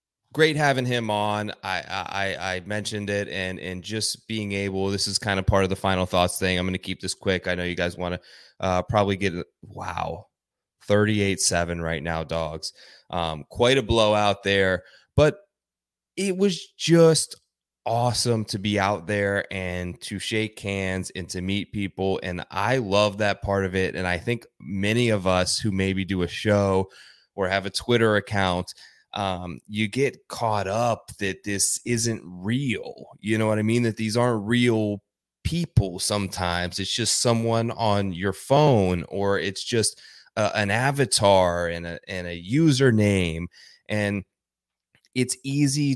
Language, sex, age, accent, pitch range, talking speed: English, male, 20-39, American, 95-115 Hz, 170 wpm